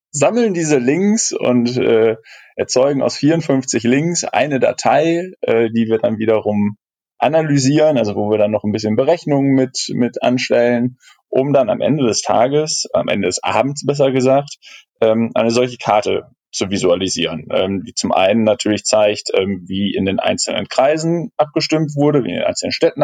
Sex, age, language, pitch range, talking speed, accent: male, 10-29, German, 105-135 Hz, 170 wpm, German